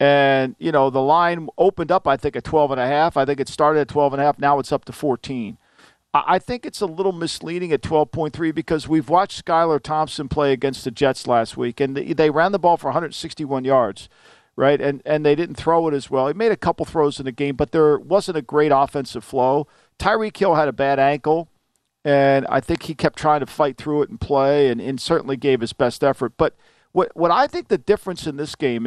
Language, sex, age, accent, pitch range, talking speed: English, male, 50-69, American, 140-165 Hz, 235 wpm